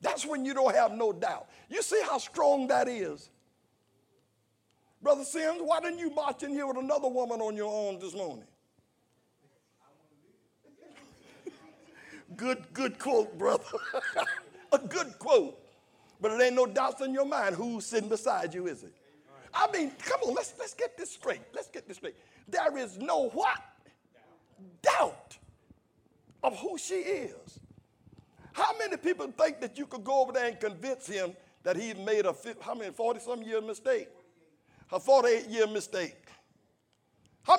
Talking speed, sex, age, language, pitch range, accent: 150 wpm, male, 60-79, English, 225-335 Hz, American